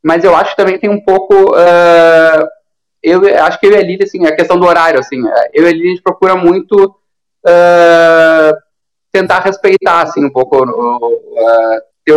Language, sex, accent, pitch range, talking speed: Portuguese, male, Brazilian, 150-185 Hz, 135 wpm